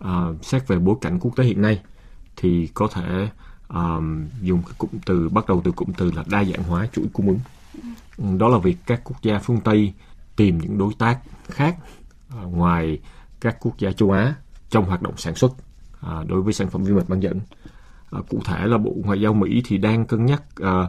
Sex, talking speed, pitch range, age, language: male, 215 wpm, 90-110 Hz, 20-39, Vietnamese